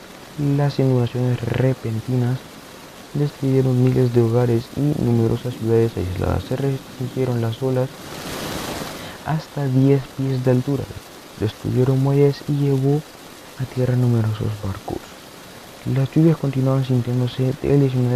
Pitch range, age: 120-140 Hz, 20-39